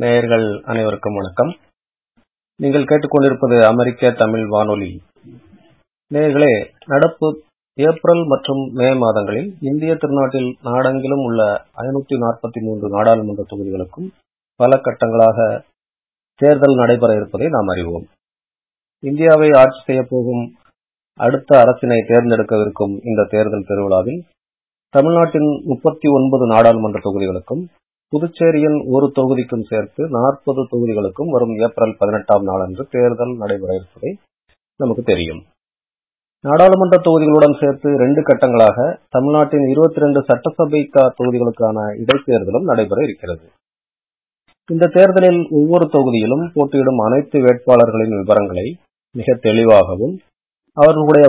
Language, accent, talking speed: Tamil, native, 95 wpm